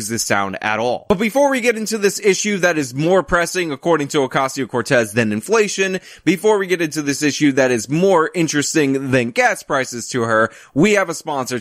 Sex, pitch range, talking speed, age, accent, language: male, 125-180 Hz, 205 wpm, 20-39, American, English